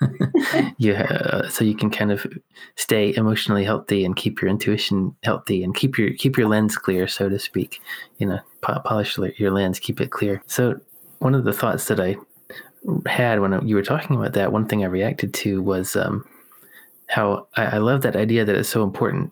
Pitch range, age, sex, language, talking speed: 100-110 Hz, 20-39, male, English, 195 wpm